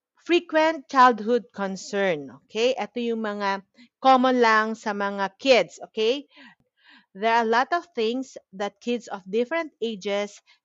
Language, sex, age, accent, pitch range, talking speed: Filipino, female, 40-59, native, 190-240 Hz, 135 wpm